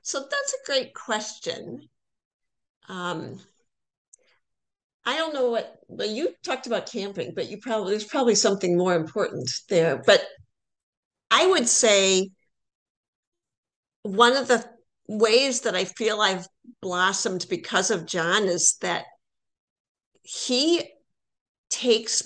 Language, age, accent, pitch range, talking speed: English, 50-69, American, 190-250 Hz, 120 wpm